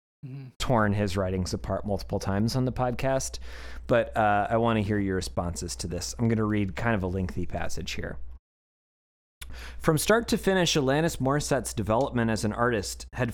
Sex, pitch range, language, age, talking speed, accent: male, 95-150 Hz, English, 30-49, 180 wpm, American